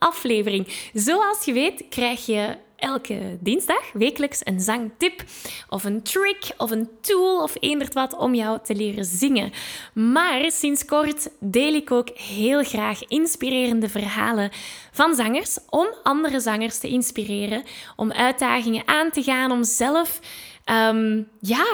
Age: 10-29